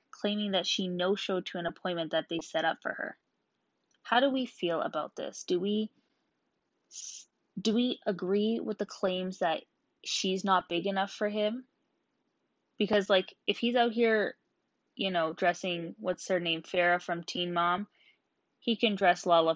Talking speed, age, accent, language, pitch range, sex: 165 wpm, 10-29, American, English, 165-205 Hz, female